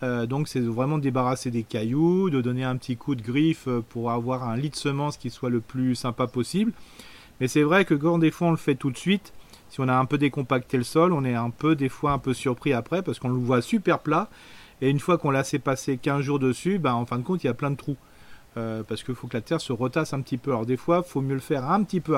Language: French